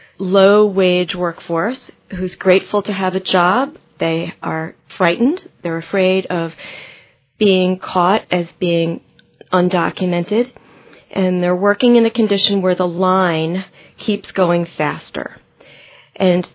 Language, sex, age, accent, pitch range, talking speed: English, female, 40-59, American, 175-210 Hz, 115 wpm